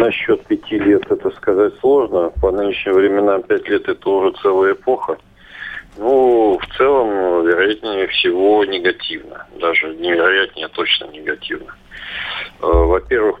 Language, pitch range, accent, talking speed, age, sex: Russian, 360-415 Hz, native, 115 wpm, 50-69, male